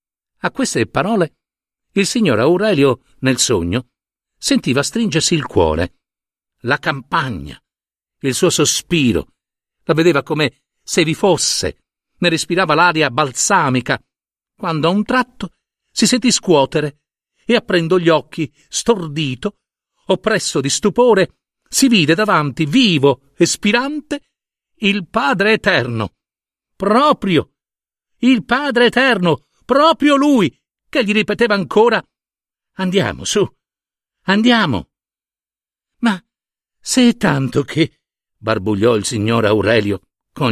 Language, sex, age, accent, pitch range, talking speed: Italian, male, 50-69, native, 140-220 Hz, 110 wpm